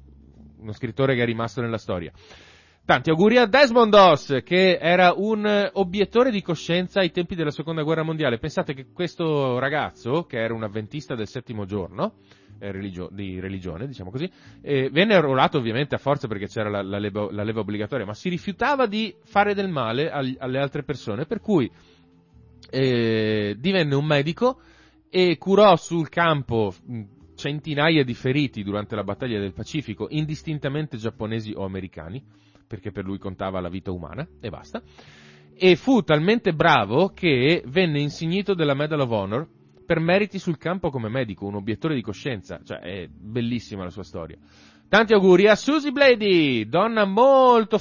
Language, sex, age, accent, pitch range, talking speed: Italian, male, 30-49, native, 105-170 Hz, 160 wpm